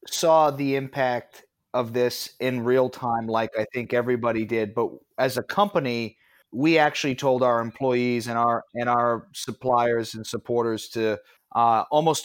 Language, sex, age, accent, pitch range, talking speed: English, male, 30-49, American, 115-130 Hz, 155 wpm